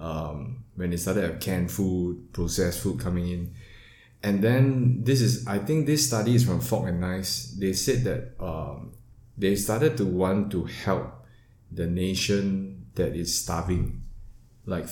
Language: English